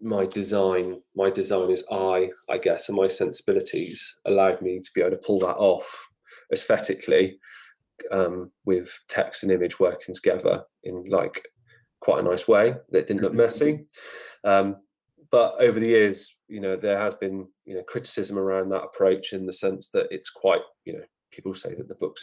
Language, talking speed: English, 180 wpm